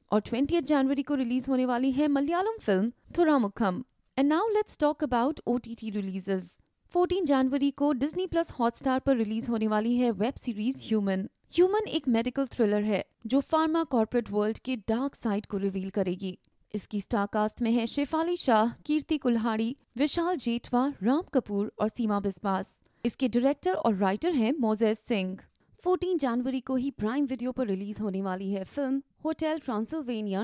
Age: 30-49